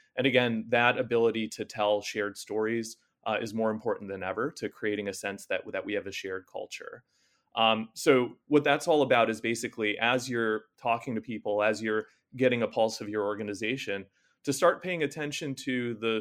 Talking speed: 195 wpm